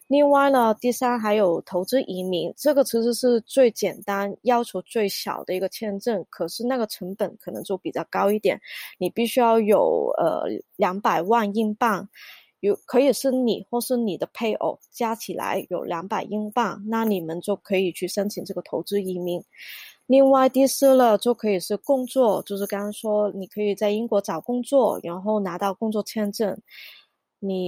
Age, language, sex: 20-39, Chinese, female